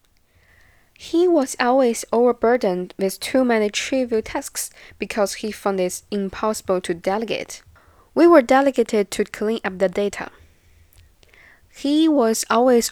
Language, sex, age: Chinese, female, 10-29